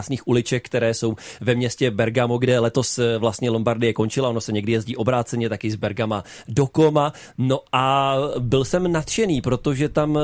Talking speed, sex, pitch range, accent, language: 165 wpm, male, 115-140 Hz, native, Czech